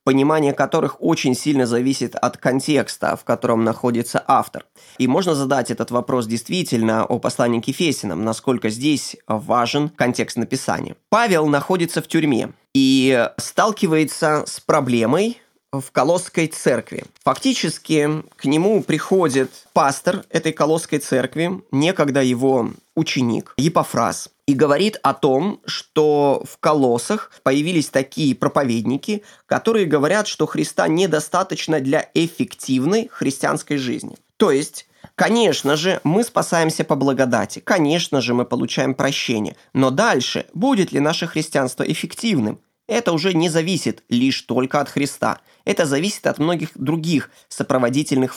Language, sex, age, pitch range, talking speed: Ukrainian, male, 20-39, 130-165 Hz, 125 wpm